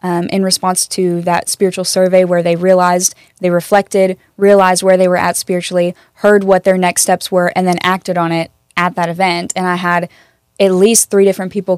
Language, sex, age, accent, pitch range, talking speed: English, female, 10-29, American, 180-195 Hz, 205 wpm